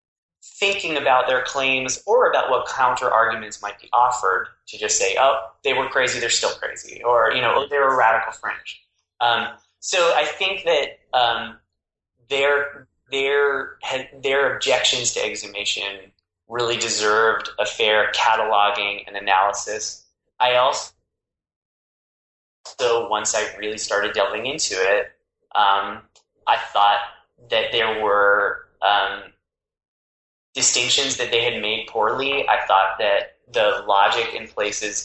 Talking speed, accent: 135 wpm, American